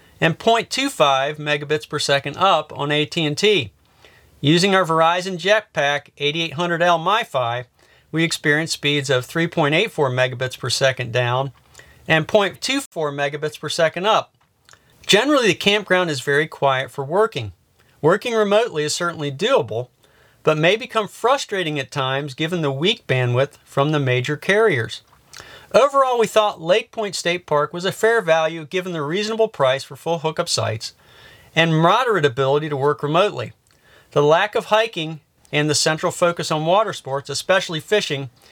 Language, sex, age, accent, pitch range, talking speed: English, male, 40-59, American, 140-185 Hz, 145 wpm